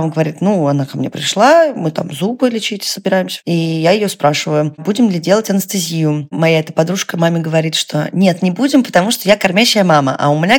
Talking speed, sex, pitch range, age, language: 210 wpm, female, 170-225 Hz, 20-39, Russian